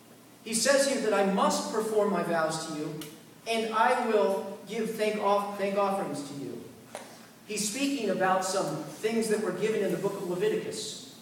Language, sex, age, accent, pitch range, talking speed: English, male, 40-59, American, 185-225 Hz, 175 wpm